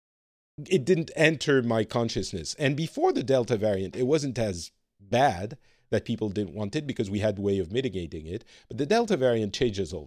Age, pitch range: 40-59, 105-130 Hz